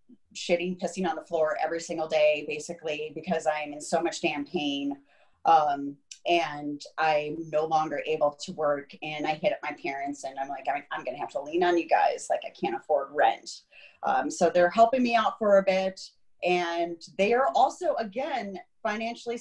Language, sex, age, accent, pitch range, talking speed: English, female, 30-49, American, 150-205 Hz, 190 wpm